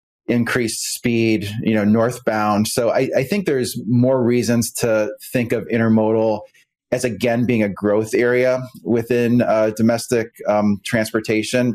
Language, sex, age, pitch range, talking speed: English, male, 30-49, 105-120 Hz, 140 wpm